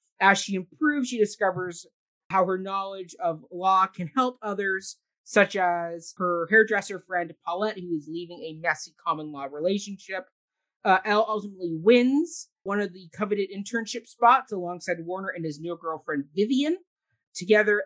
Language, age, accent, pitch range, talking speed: English, 30-49, American, 175-220 Hz, 150 wpm